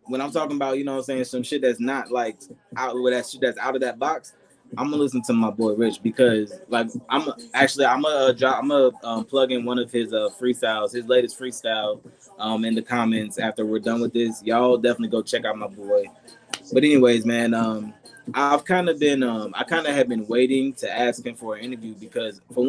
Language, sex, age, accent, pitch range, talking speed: English, male, 20-39, American, 115-135 Hz, 240 wpm